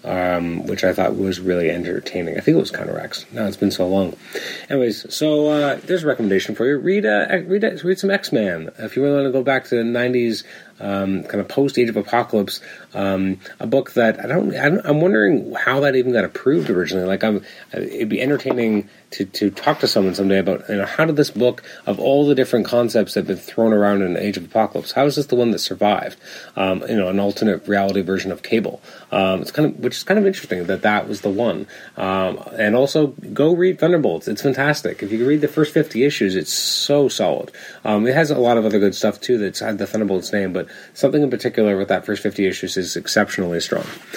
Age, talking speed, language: 30-49, 240 wpm, English